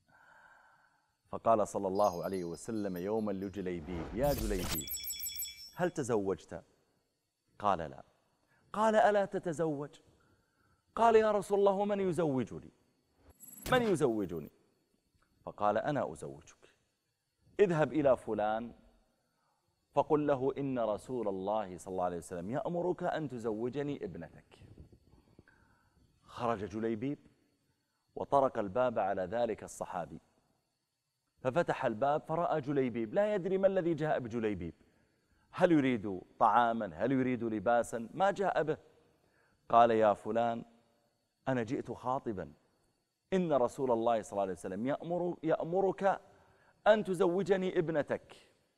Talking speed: 110 wpm